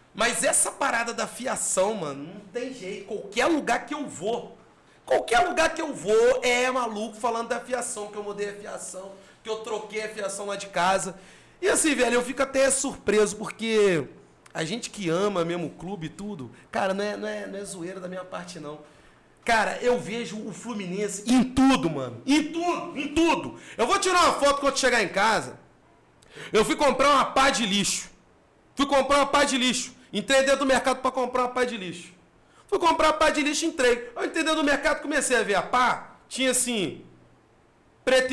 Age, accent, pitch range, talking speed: 40-59, Brazilian, 210-285 Hz, 200 wpm